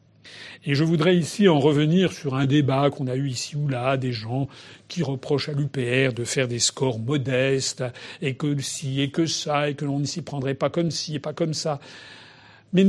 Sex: male